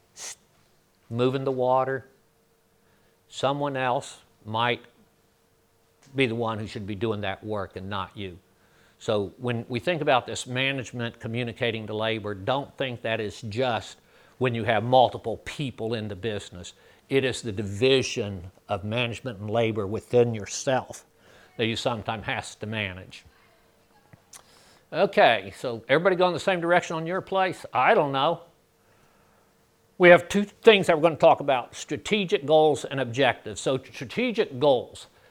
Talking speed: 150 wpm